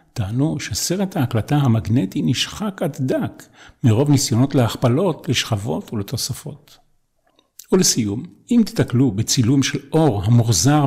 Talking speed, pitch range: 105 wpm, 115-150 Hz